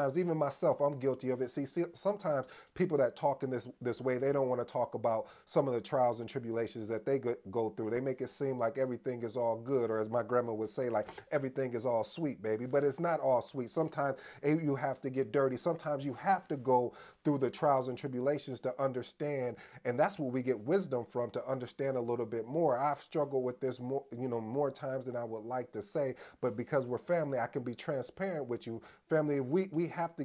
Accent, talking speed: American, 235 wpm